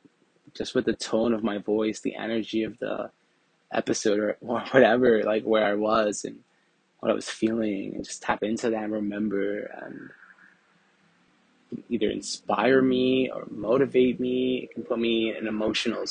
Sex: male